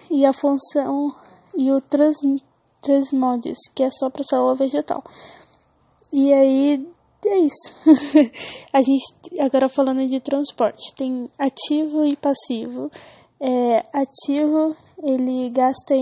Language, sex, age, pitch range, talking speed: English, female, 10-29, 260-290 Hz, 120 wpm